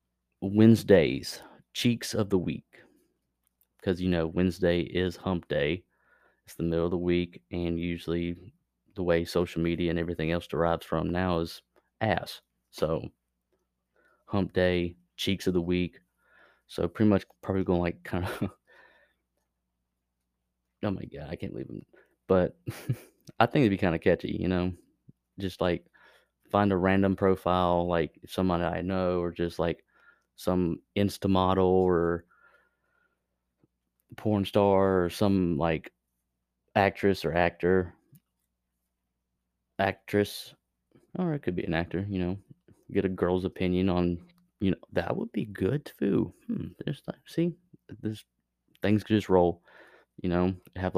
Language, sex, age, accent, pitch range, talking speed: English, male, 30-49, American, 85-95 Hz, 145 wpm